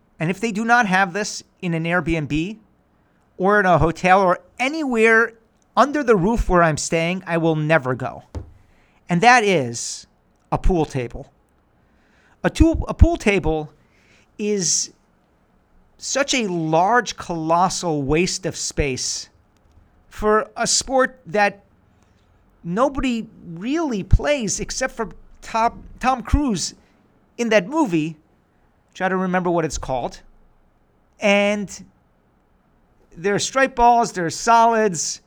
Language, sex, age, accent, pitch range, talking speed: English, male, 50-69, American, 150-220 Hz, 125 wpm